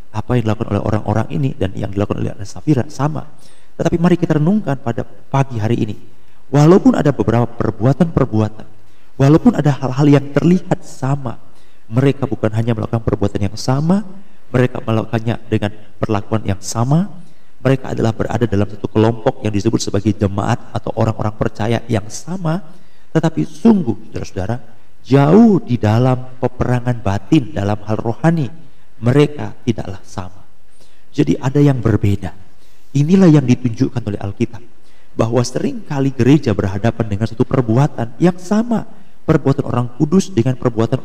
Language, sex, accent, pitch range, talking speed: Indonesian, male, native, 110-150 Hz, 140 wpm